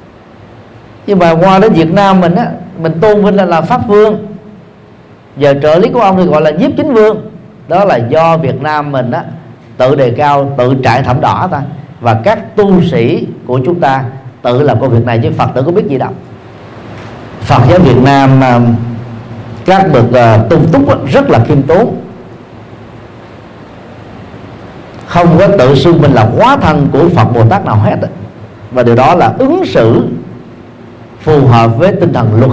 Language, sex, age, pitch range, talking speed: Vietnamese, male, 40-59, 120-170 Hz, 180 wpm